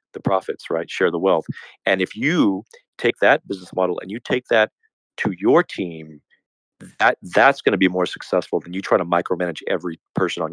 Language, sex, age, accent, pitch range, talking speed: English, male, 40-59, American, 85-115 Hz, 200 wpm